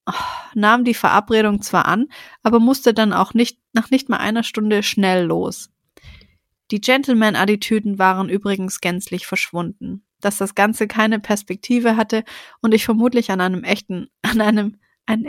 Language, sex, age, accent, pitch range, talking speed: German, female, 30-49, German, 190-230 Hz, 150 wpm